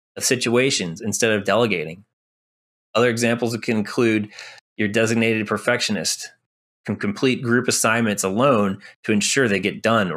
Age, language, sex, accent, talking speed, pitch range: 20-39, English, male, American, 125 wpm, 105-130 Hz